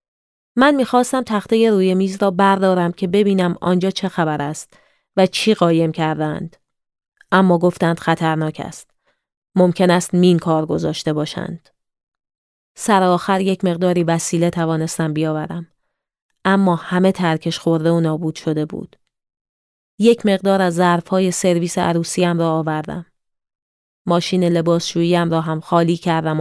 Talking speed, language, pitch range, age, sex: 130 wpm, Persian, 165-190 Hz, 30-49, female